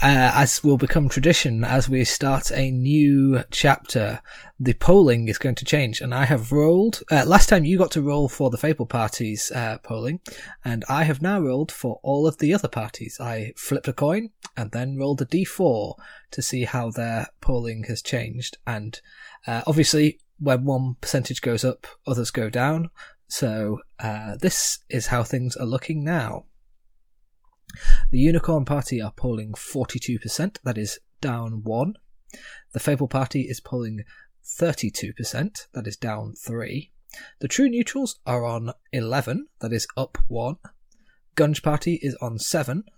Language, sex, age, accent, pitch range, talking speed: English, male, 20-39, British, 115-150 Hz, 170 wpm